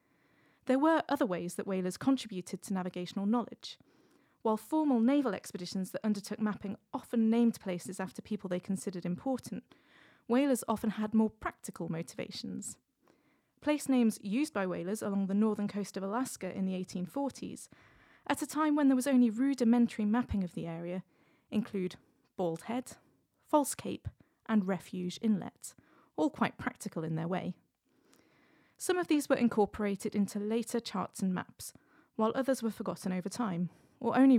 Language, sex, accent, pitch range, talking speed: English, female, British, 185-245 Hz, 155 wpm